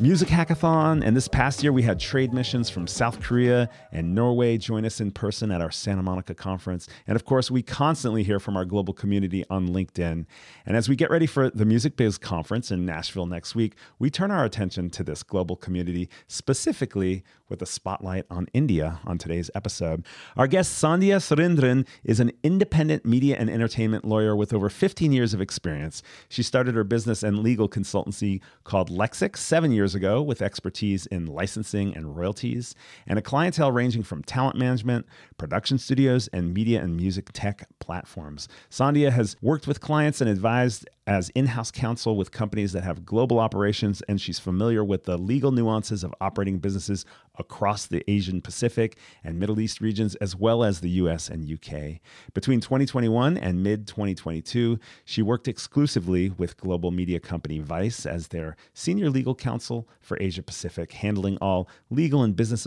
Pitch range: 95-125 Hz